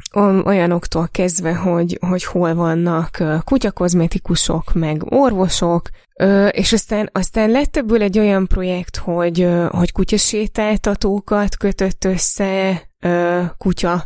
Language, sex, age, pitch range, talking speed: Hungarian, female, 20-39, 170-190 Hz, 100 wpm